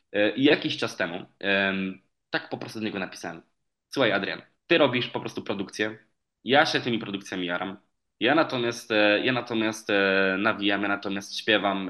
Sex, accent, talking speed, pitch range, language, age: male, native, 150 wpm, 100-130 Hz, Polish, 20-39